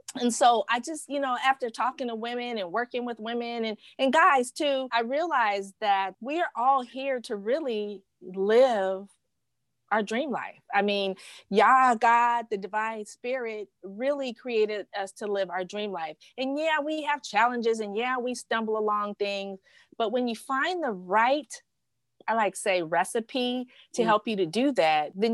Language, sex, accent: English, female, American